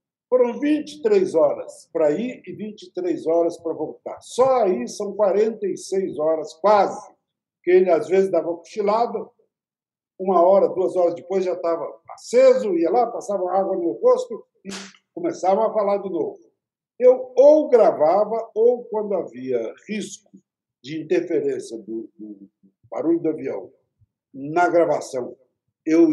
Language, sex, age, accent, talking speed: Portuguese, male, 60-79, Brazilian, 140 wpm